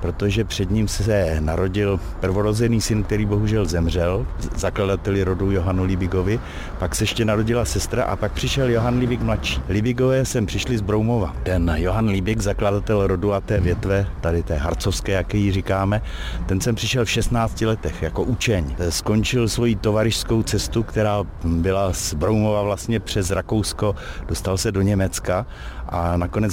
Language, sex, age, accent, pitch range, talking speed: Czech, male, 60-79, native, 95-110 Hz, 155 wpm